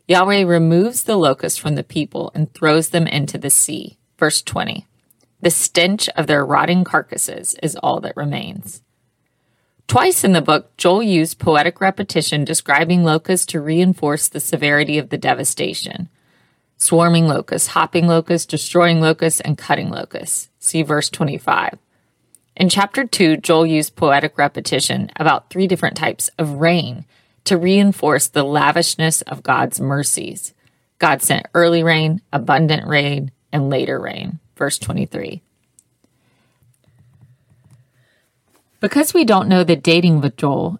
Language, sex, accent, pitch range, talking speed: English, female, American, 145-175 Hz, 135 wpm